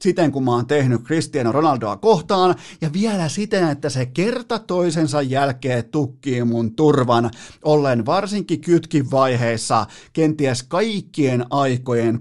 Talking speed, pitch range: 130 wpm, 120-150 Hz